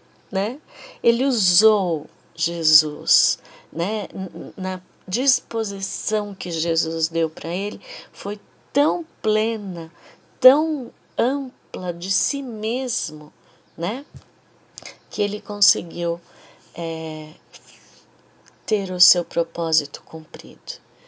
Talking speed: 85 wpm